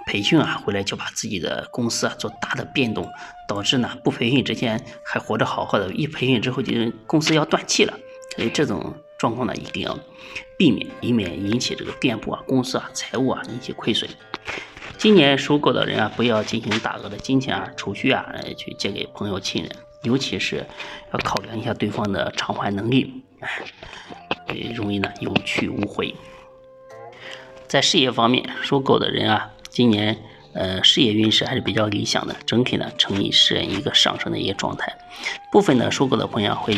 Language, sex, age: Chinese, male, 20-39